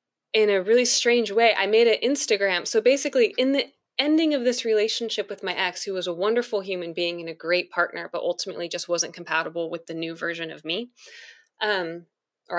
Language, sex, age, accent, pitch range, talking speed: English, female, 20-39, American, 175-230 Hz, 205 wpm